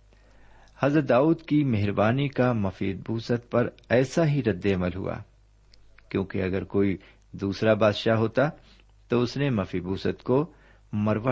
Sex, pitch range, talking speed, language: male, 95-120 Hz, 140 wpm, Urdu